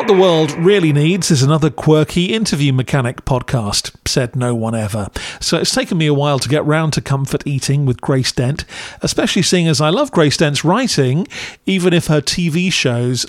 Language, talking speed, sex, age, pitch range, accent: English, 195 wpm, male, 40-59, 130-160 Hz, British